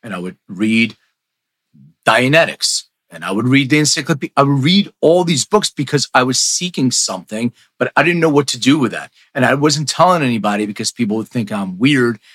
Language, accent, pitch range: English, American, 105-135 Hz